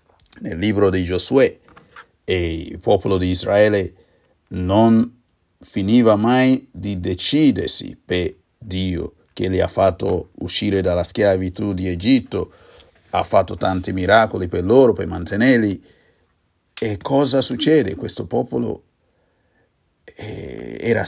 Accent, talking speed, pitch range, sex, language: native, 110 wpm, 95-115 Hz, male, Italian